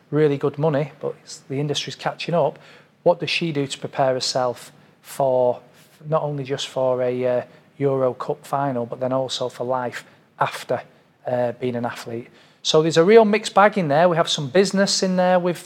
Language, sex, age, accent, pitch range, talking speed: English, male, 40-59, British, 135-155 Hz, 190 wpm